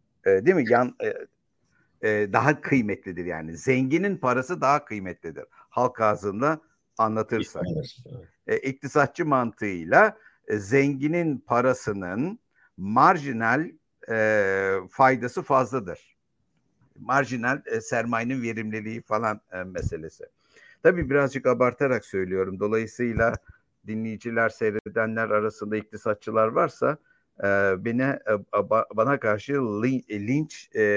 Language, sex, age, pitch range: Turkish, male, 60-79, 110-140 Hz